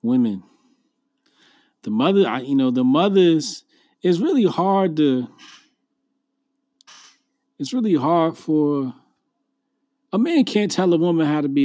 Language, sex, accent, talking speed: English, male, American, 130 wpm